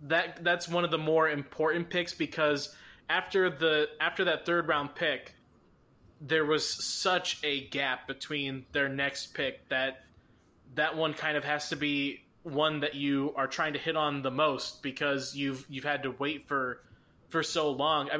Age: 20-39